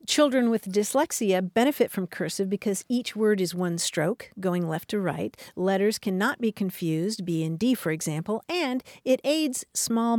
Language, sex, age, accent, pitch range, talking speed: English, female, 50-69, American, 185-245 Hz, 170 wpm